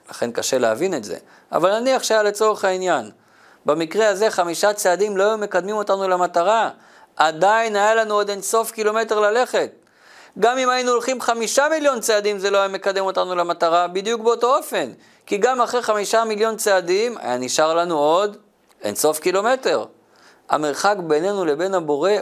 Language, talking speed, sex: Hebrew, 160 wpm, male